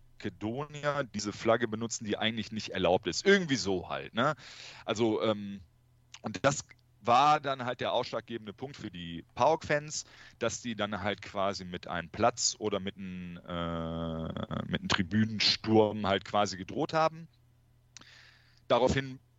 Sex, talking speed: male, 140 wpm